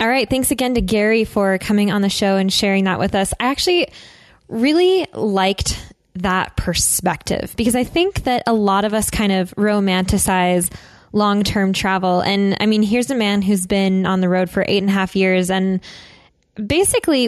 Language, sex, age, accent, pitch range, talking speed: English, female, 10-29, American, 190-225 Hz, 190 wpm